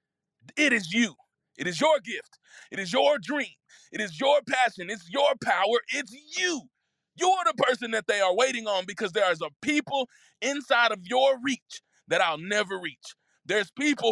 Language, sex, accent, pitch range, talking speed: English, male, American, 190-270 Hz, 185 wpm